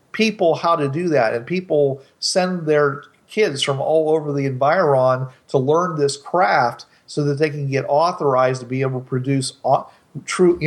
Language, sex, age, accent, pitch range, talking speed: English, male, 40-59, American, 130-150 Hz, 180 wpm